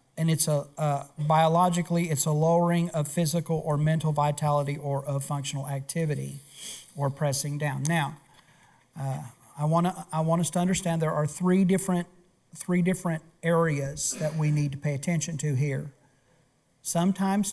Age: 50-69